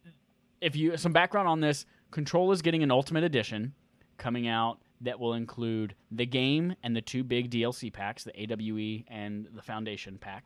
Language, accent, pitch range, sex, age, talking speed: English, American, 110-150 Hz, male, 20-39, 180 wpm